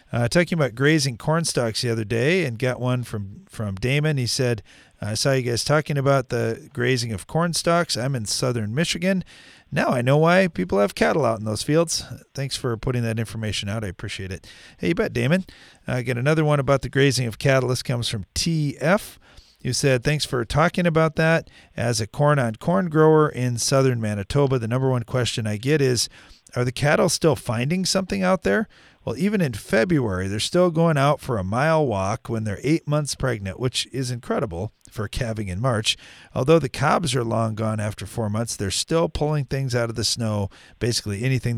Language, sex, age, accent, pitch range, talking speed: English, male, 40-59, American, 110-145 Hz, 205 wpm